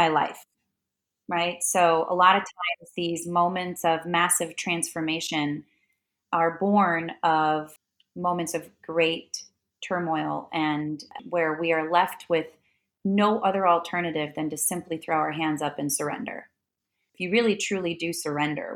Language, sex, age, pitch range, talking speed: English, female, 30-49, 155-180 Hz, 140 wpm